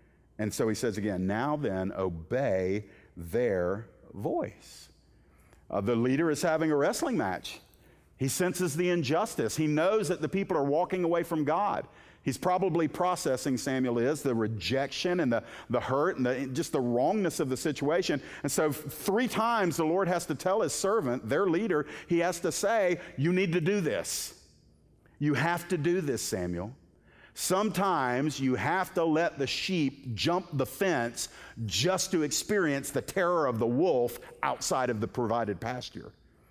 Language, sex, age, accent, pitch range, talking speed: English, male, 50-69, American, 125-175 Hz, 165 wpm